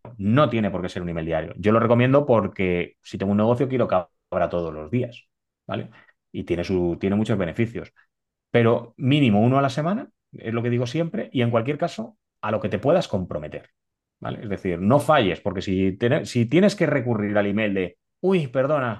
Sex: male